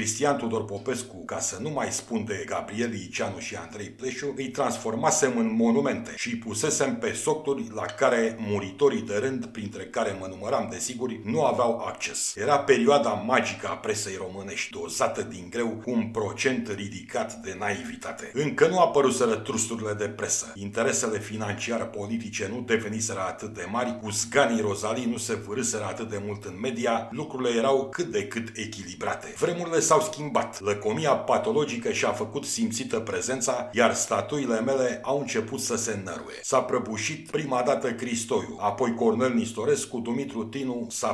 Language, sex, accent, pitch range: Romanian, male, native, 105-135 Hz